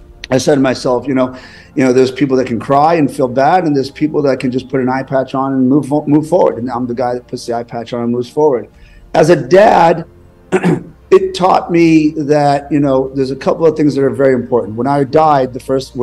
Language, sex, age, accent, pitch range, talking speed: English, male, 40-59, American, 125-145 Hz, 250 wpm